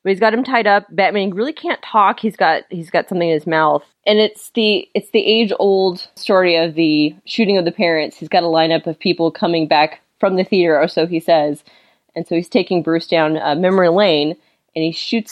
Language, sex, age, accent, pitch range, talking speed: English, female, 20-39, American, 165-200 Hz, 230 wpm